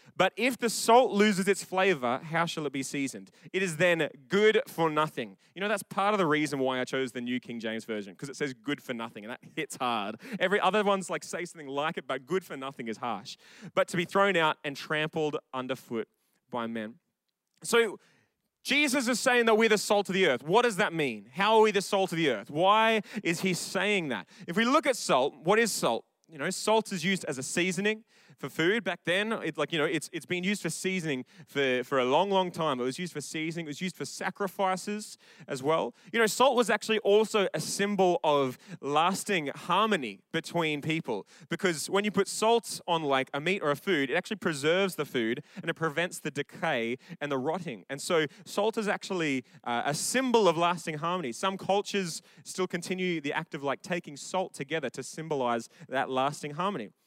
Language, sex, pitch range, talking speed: English, male, 145-200 Hz, 220 wpm